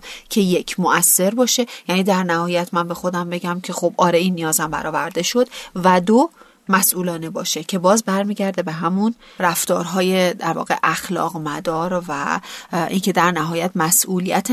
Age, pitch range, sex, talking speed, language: 30-49, 165-205 Hz, female, 160 wpm, Persian